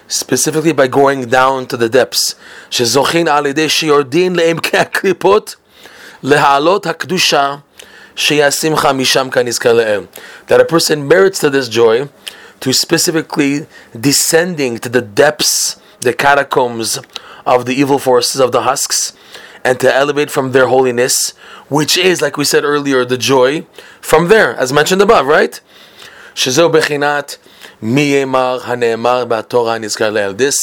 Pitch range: 125-150 Hz